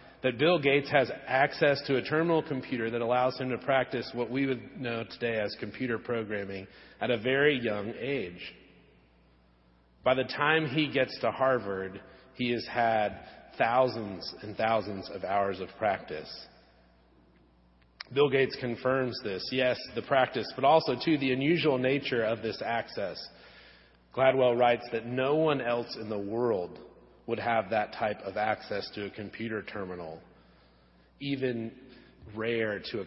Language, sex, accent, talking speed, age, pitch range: English, male, American, 150 wpm, 40-59, 105-130 Hz